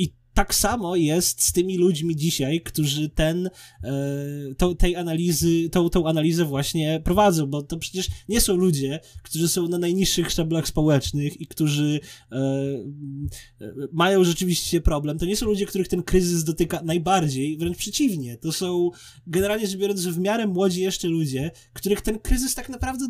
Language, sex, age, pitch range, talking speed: Polish, male, 20-39, 160-215 Hz, 165 wpm